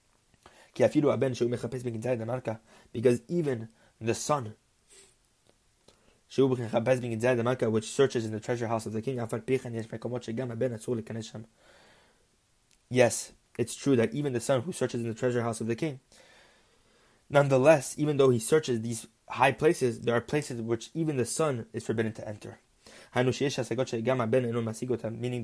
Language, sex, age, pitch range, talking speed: English, male, 20-39, 115-145 Hz, 115 wpm